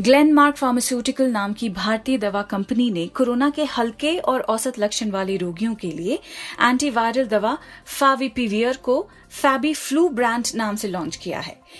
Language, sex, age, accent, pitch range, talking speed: Hindi, female, 30-49, native, 220-280 Hz, 155 wpm